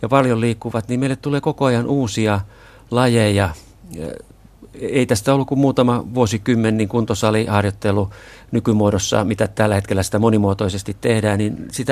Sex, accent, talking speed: male, native, 140 wpm